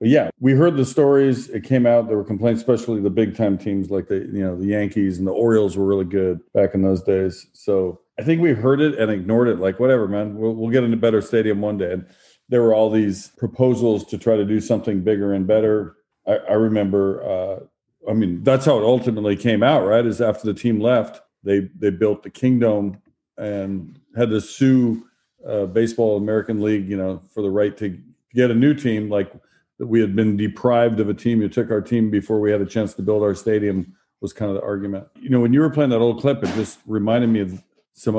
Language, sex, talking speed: English, male, 235 wpm